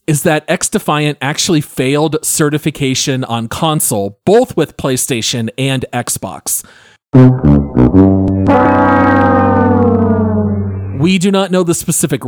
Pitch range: 120-170 Hz